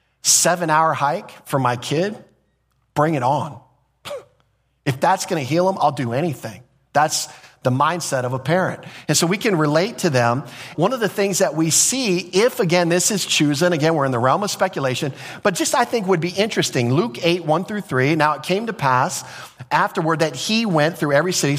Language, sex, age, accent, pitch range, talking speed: English, male, 40-59, American, 125-160 Hz, 205 wpm